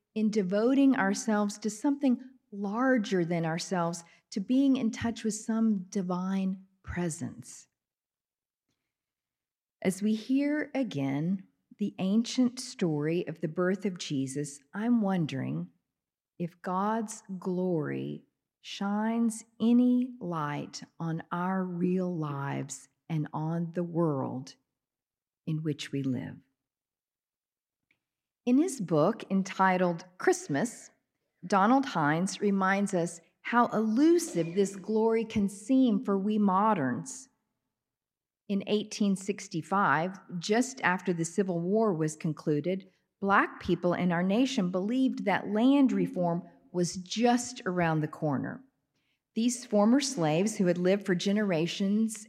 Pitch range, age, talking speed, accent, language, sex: 170-220 Hz, 50-69, 110 wpm, American, English, female